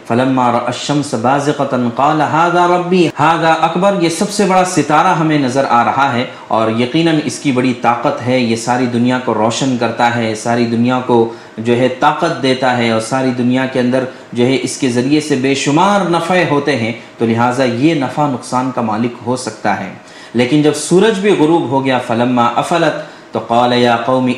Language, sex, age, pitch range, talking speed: Urdu, male, 30-49, 125-155 Hz, 190 wpm